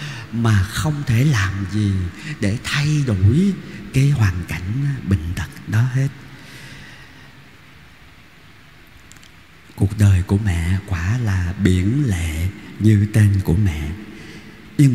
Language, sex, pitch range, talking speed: Vietnamese, male, 100-130 Hz, 110 wpm